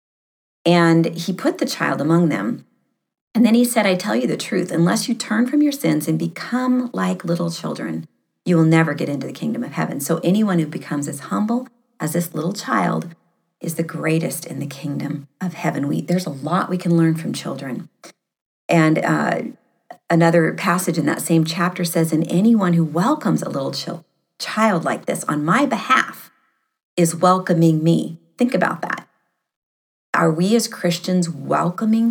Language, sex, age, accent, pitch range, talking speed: English, female, 40-59, American, 160-205 Hz, 180 wpm